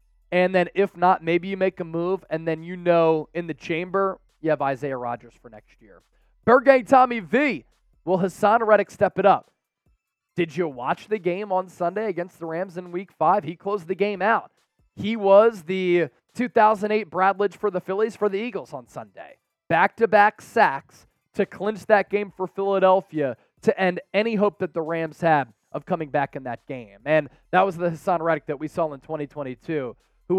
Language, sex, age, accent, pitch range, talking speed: English, male, 20-39, American, 155-205 Hz, 190 wpm